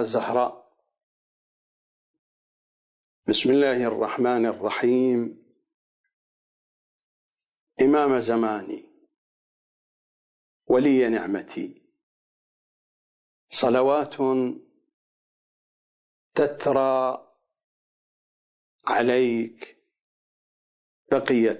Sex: male